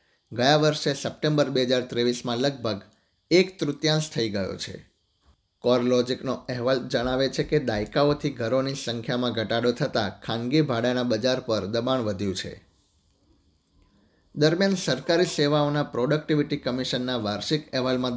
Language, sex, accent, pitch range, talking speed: Gujarati, male, native, 110-140 Hz, 120 wpm